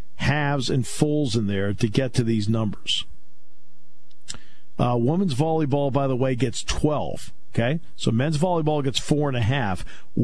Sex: male